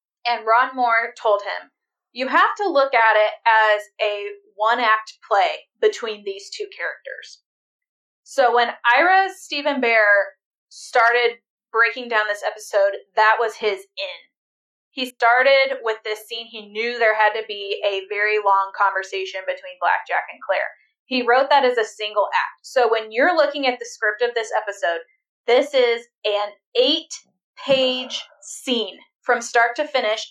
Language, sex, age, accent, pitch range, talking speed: English, female, 20-39, American, 215-310 Hz, 155 wpm